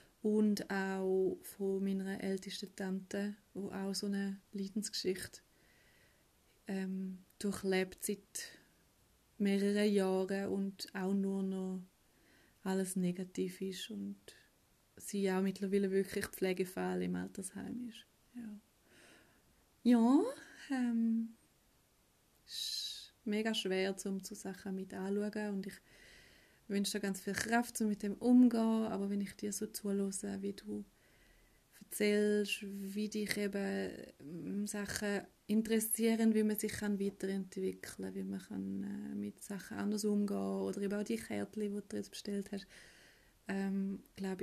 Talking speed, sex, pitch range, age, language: 125 wpm, female, 190-205 Hz, 30-49, German